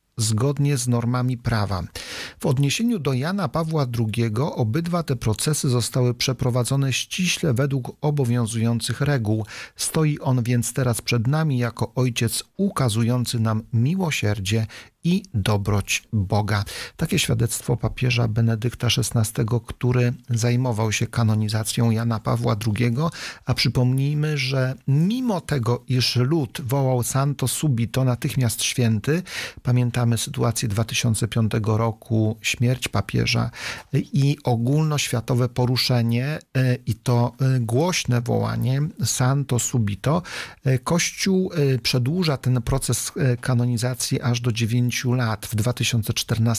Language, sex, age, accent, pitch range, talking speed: Polish, male, 40-59, native, 115-135 Hz, 105 wpm